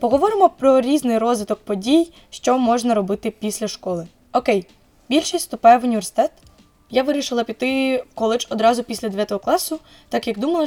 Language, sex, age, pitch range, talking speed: Ukrainian, female, 20-39, 220-265 Hz, 150 wpm